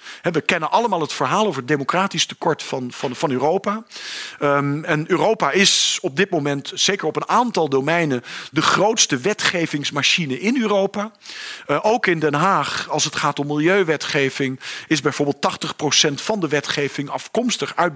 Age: 40-59